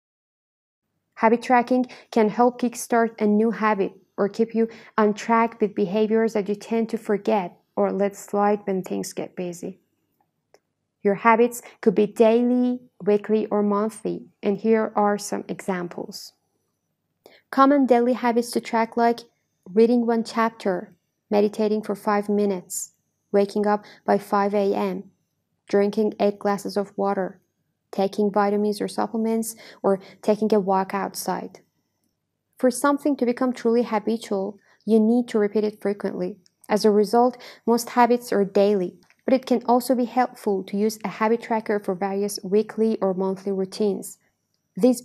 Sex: female